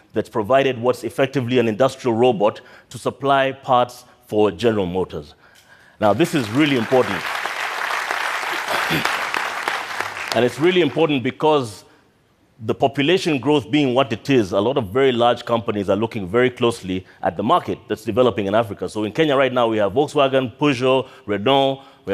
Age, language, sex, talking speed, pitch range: 30-49, French, male, 155 wpm, 110-135 Hz